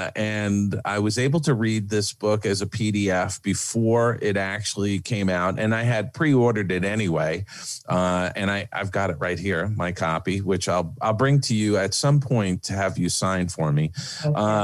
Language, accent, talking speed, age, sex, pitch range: English, American, 195 wpm, 40-59, male, 90-115 Hz